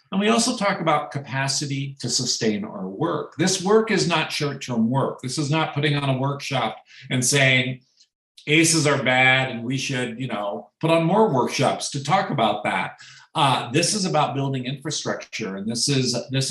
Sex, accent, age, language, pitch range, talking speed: male, American, 50-69, English, 120-155 Hz, 185 wpm